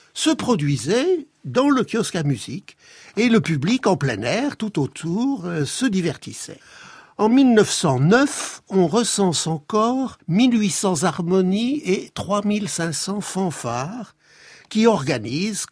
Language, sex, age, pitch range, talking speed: French, male, 60-79, 160-230 Hz, 110 wpm